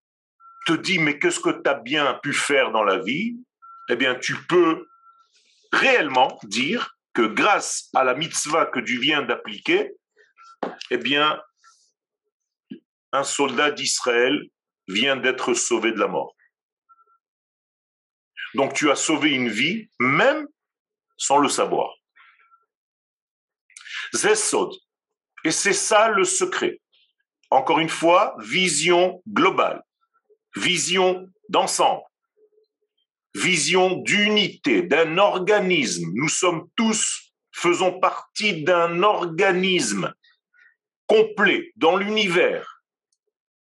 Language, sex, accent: French, male, French